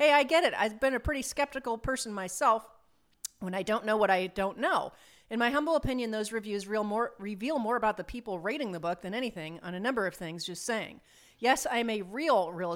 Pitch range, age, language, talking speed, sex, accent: 195-260 Hz, 40-59, English, 230 wpm, female, American